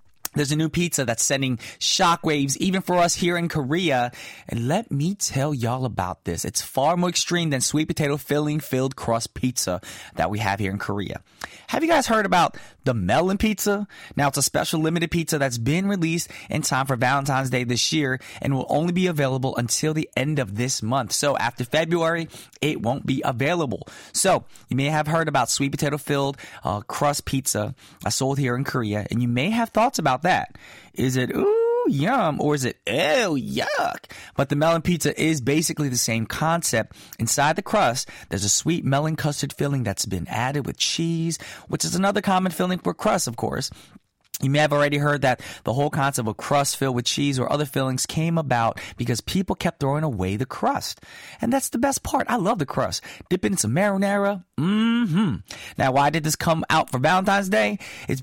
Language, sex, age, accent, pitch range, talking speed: English, male, 20-39, American, 125-170 Hz, 200 wpm